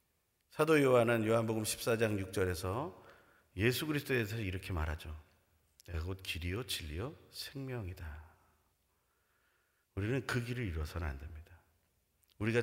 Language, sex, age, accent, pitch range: Korean, male, 40-59, native, 90-145 Hz